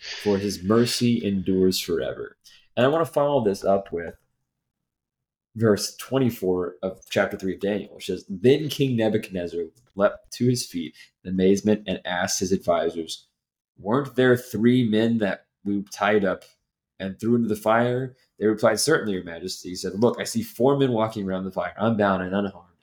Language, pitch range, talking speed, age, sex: English, 95-120 Hz, 175 wpm, 20-39, male